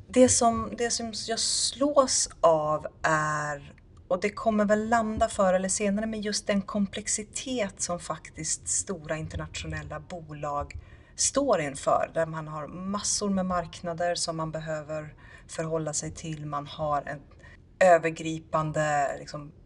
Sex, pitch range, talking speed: female, 155-195 Hz, 135 wpm